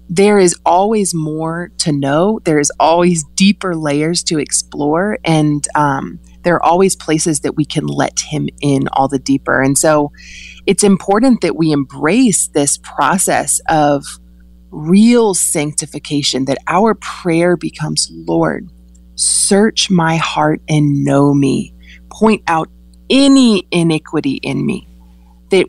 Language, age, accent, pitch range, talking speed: English, 30-49, American, 140-200 Hz, 135 wpm